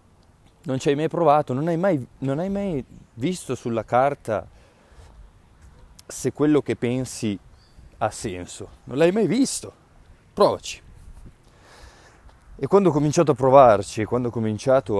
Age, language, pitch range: 20-39, Italian, 95-130 Hz